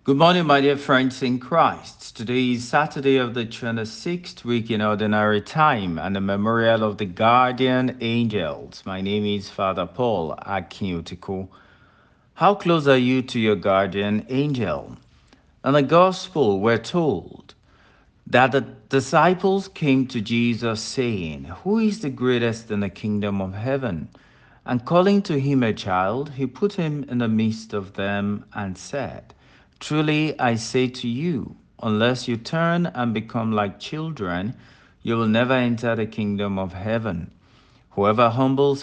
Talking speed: 150 wpm